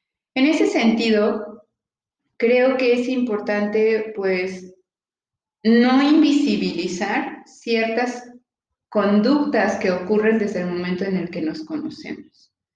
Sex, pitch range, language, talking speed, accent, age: female, 200-255 Hz, Spanish, 105 wpm, Mexican, 30-49